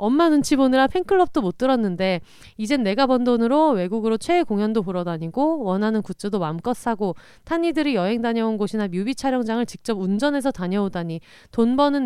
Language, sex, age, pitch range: Korean, female, 30-49, 190-270 Hz